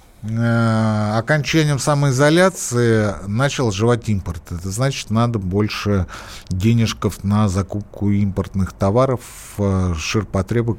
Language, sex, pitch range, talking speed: Russian, male, 95-125 Hz, 85 wpm